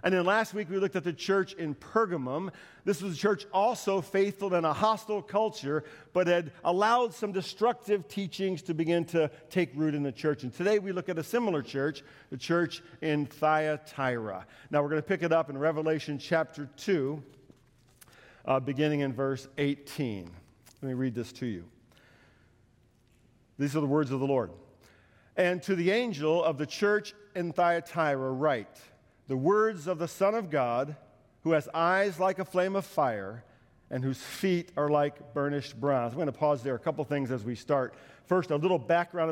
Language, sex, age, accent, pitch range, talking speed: English, male, 50-69, American, 135-180 Hz, 185 wpm